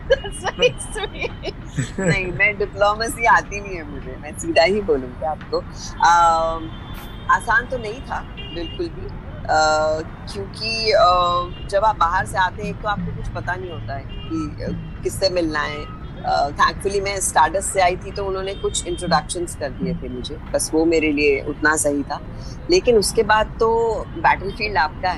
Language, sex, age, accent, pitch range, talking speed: Hindi, female, 20-39, native, 150-205 Hz, 150 wpm